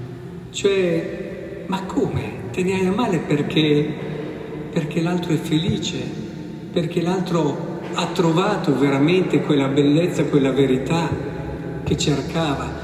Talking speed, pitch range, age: 105 wpm, 140-165 Hz, 50-69